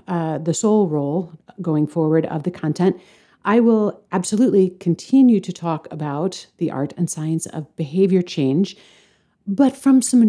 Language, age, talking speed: English, 40-59, 150 wpm